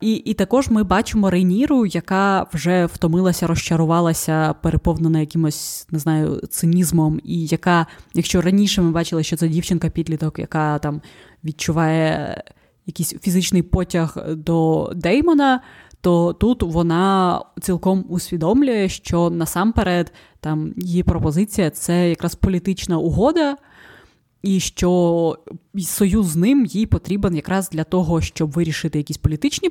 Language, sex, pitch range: Ukrainian, female, 165-200 Hz